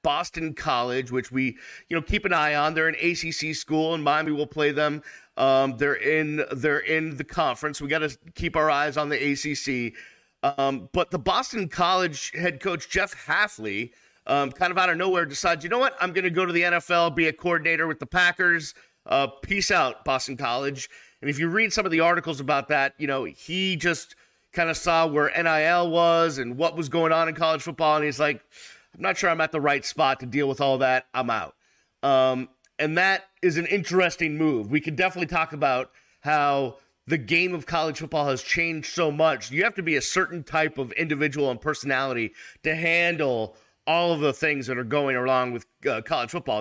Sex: male